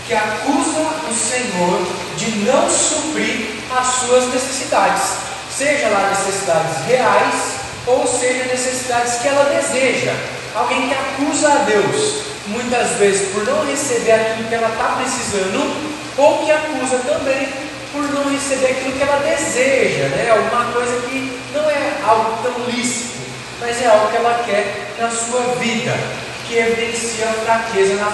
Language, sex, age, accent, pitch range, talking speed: Portuguese, male, 20-39, Brazilian, 215-260 Hz, 145 wpm